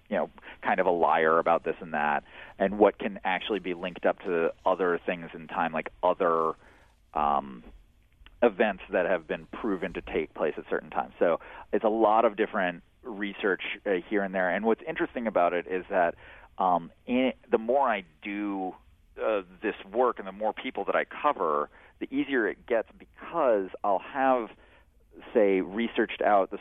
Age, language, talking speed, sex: 30-49, English, 180 wpm, male